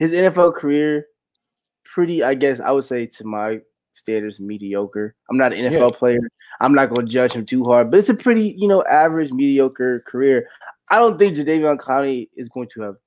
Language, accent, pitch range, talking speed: English, American, 120-150 Hz, 195 wpm